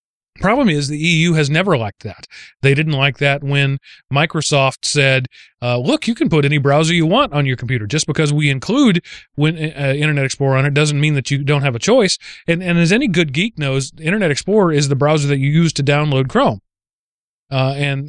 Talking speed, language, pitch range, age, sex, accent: 215 wpm, English, 140-170 Hz, 30-49, male, American